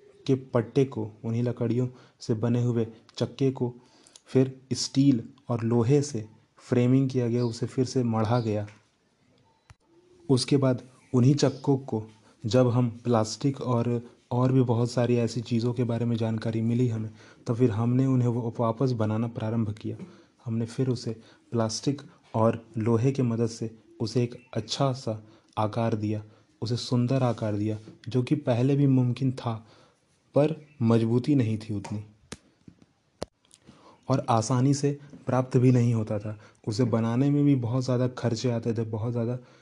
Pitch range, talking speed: 115-130 Hz, 155 wpm